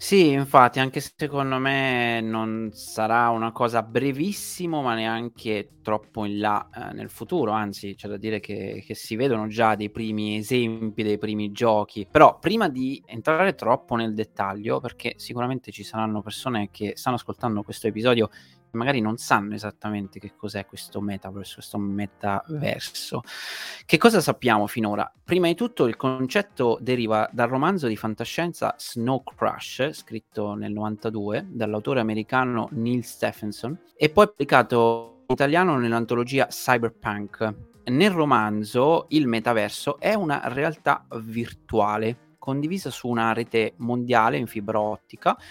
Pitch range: 105-140 Hz